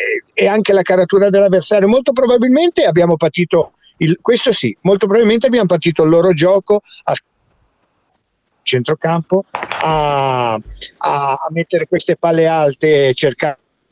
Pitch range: 130-170 Hz